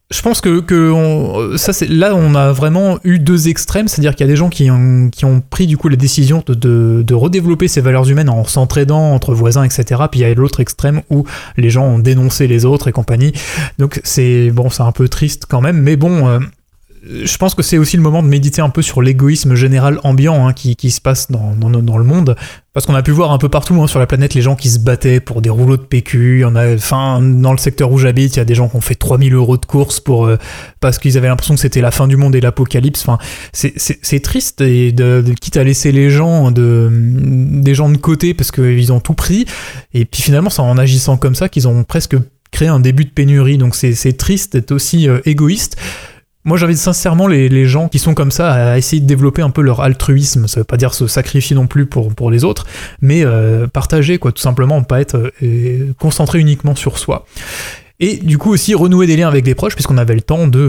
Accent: French